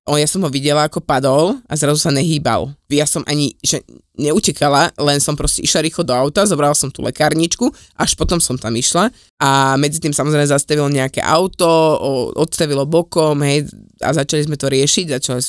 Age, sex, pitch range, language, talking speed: 20-39, female, 135-160 Hz, Slovak, 180 wpm